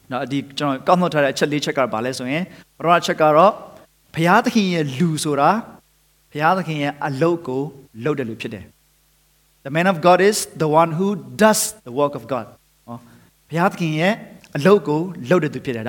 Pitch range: 140-195 Hz